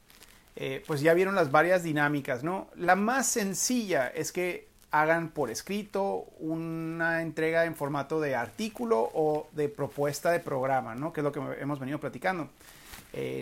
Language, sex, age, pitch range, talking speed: Spanish, male, 30-49, 145-180 Hz, 160 wpm